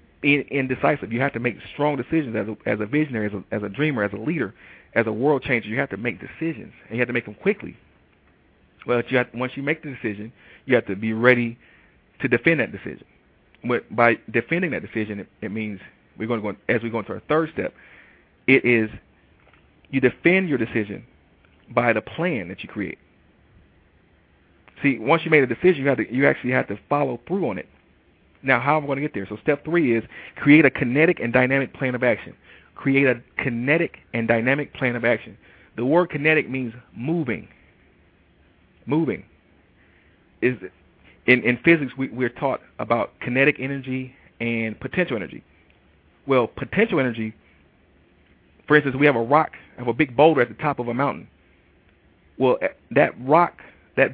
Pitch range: 100-140 Hz